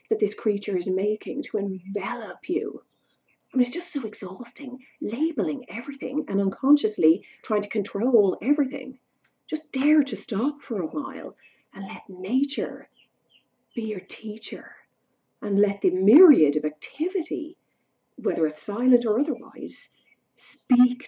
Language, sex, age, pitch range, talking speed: English, female, 40-59, 195-285 Hz, 135 wpm